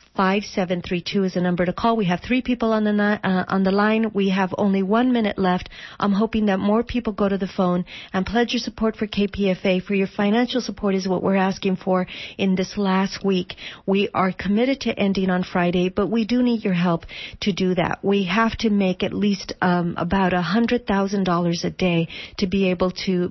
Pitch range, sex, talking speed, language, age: 180-205 Hz, female, 210 wpm, English, 40-59